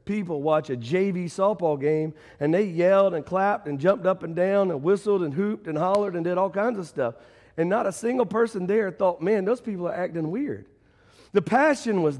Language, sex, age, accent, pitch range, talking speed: English, male, 40-59, American, 160-210 Hz, 215 wpm